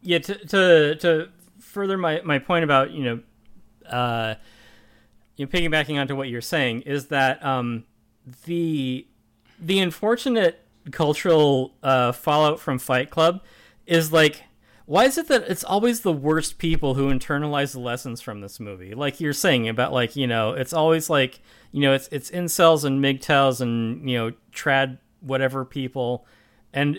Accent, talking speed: American, 160 wpm